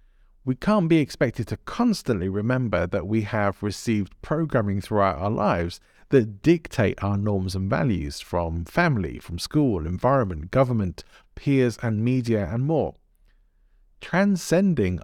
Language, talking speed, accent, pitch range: English, 130 wpm, British, 100-145 Hz